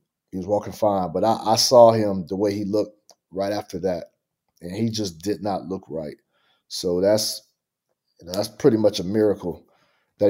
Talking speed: 180 wpm